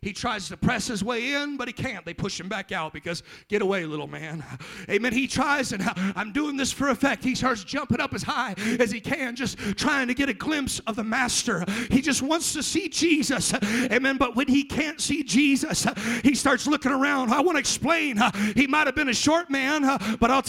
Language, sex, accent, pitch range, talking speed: English, male, American, 235-300 Hz, 225 wpm